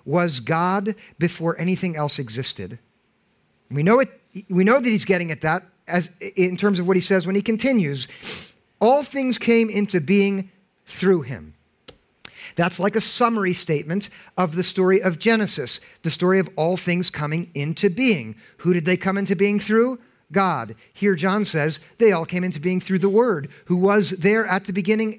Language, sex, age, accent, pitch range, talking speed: English, male, 50-69, American, 155-200 Hz, 180 wpm